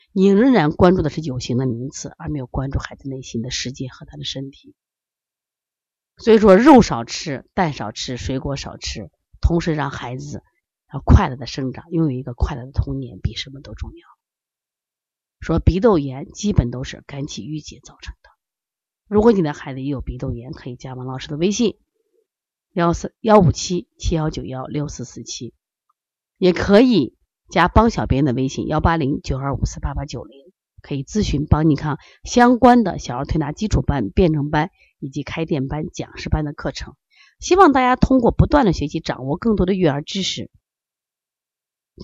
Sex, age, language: female, 30-49, Chinese